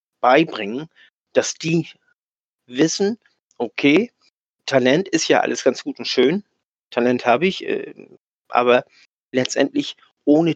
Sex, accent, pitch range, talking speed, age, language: male, German, 135-200 Hz, 115 wpm, 50-69, German